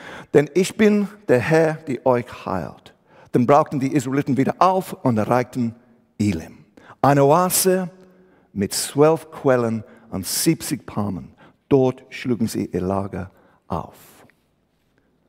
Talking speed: 120 wpm